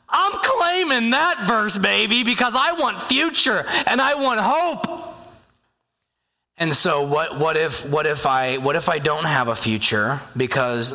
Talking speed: 160 wpm